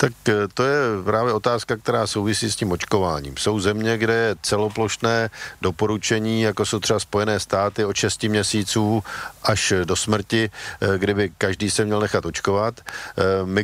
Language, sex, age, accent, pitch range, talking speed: Czech, male, 50-69, native, 95-105 Hz, 150 wpm